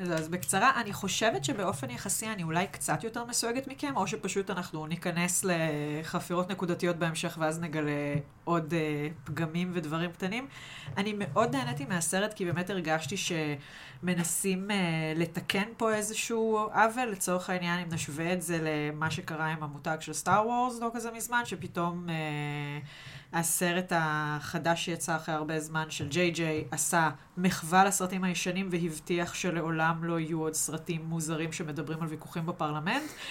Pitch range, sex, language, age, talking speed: 160-200 Hz, female, Hebrew, 30-49, 150 wpm